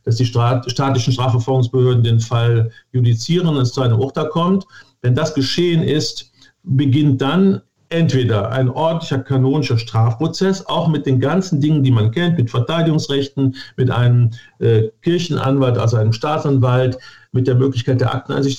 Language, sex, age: German, male, 50-69